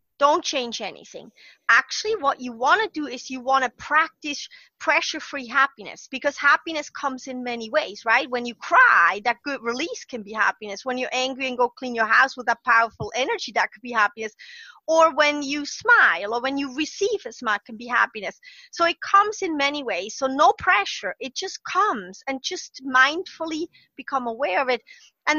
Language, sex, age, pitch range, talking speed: English, female, 30-49, 255-330 Hz, 195 wpm